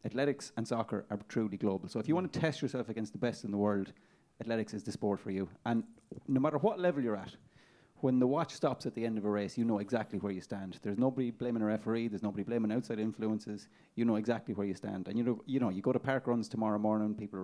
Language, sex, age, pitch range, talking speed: English, male, 30-49, 105-120 Hz, 265 wpm